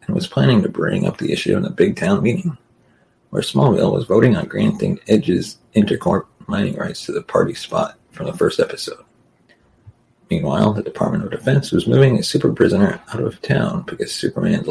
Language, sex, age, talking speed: English, male, 30-49, 185 wpm